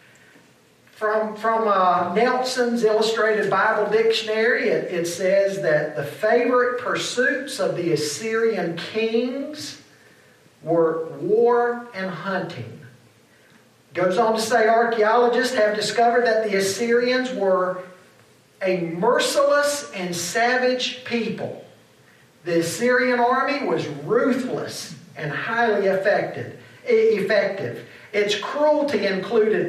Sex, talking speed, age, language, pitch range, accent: male, 100 wpm, 50-69, English, 175-240 Hz, American